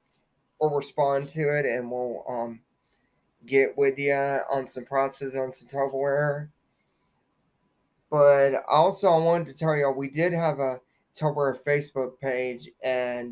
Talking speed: 145 wpm